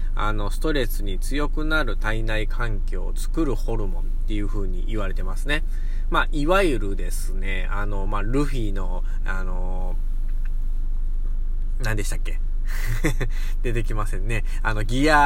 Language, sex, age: Japanese, male, 20-39